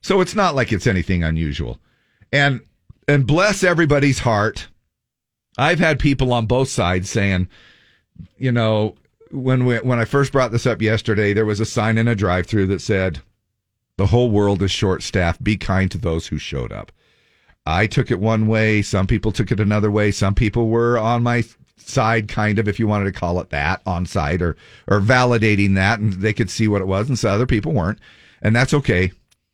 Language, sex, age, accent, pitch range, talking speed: English, male, 50-69, American, 100-125 Hz, 200 wpm